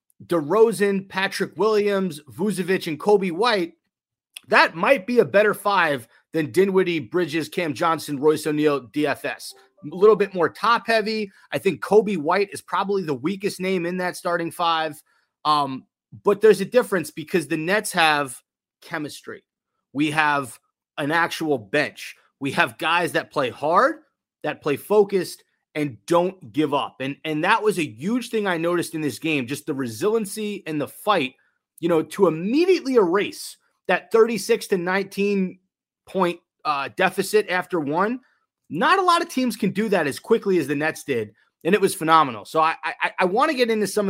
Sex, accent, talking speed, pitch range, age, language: male, American, 175 wpm, 155-205 Hz, 30-49, English